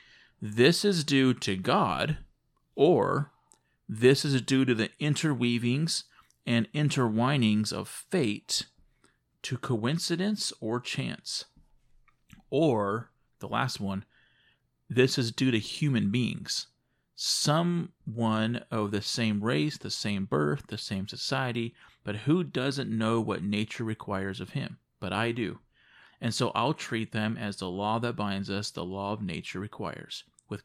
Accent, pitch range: American, 105-135 Hz